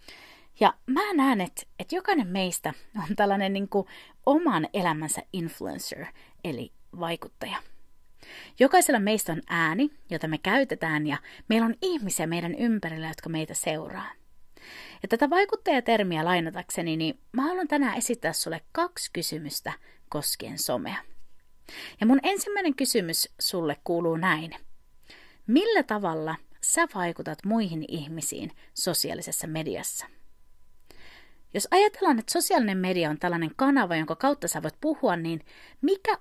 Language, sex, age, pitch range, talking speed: Finnish, female, 30-49, 170-280 Hz, 125 wpm